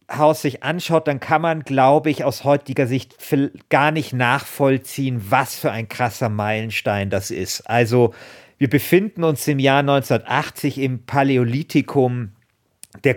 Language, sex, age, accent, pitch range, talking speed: German, male, 50-69, German, 120-145 Hz, 140 wpm